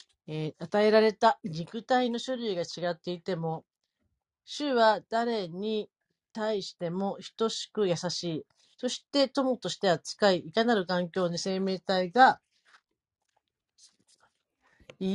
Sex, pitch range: female, 170-230 Hz